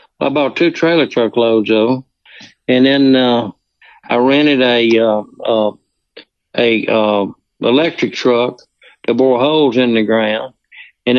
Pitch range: 120-145 Hz